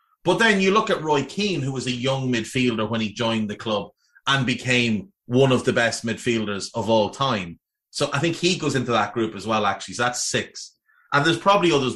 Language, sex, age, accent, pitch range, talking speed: English, male, 30-49, Irish, 110-150 Hz, 225 wpm